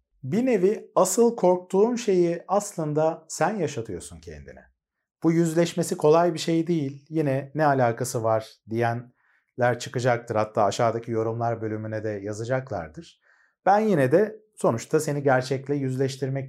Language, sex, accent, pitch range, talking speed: Turkish, male, native, 125-165 Hz, 125 wpm